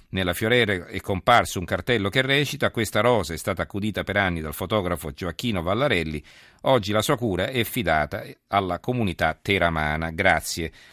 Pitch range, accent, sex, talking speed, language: 90-115 Hz, native, male, 160 wpm, Italian